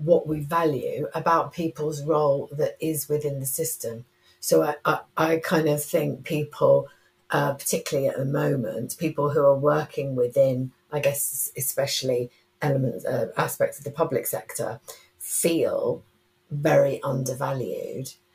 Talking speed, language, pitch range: 135 wpm, English, 130-160 Hz